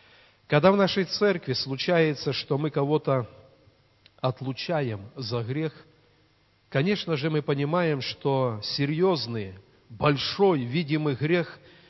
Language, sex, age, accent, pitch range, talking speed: Russian, male, 40-59, native, 125-165 Hz, 100 wpm